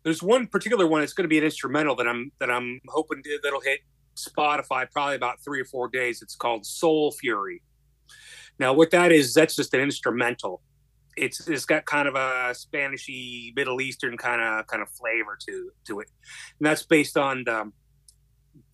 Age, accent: 30-49, American